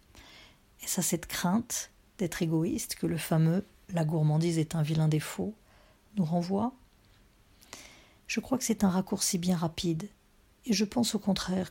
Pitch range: 165-200 Hz